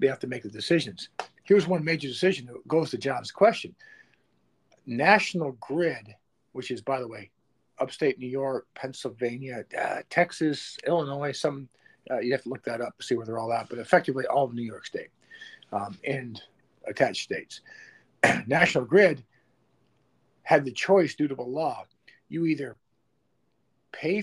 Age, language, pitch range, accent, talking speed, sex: 50-69, English, 125-175 Hz, American, 165 wpm, male